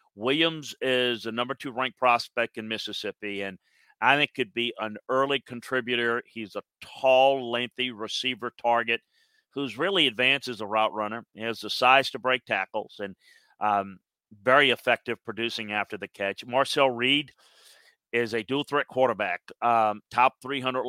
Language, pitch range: English, 110-135 Hz